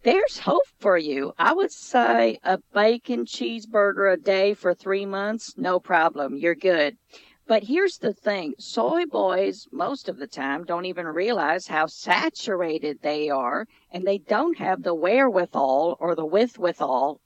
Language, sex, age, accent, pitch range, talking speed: English, female, 50-69, American, 180-235 Hz, 155 wpm